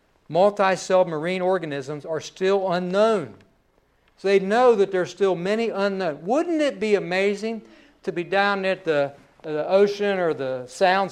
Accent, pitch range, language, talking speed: American, 160-205 Hz, English, 150 wpm